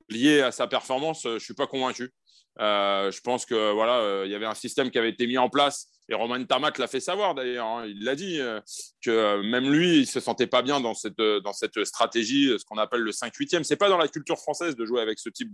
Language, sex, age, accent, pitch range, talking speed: French, male, 30-49, French, 120-165 Hz, 275 wpm